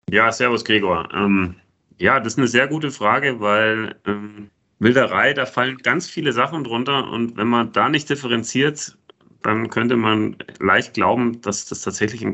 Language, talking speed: German, 170 wpm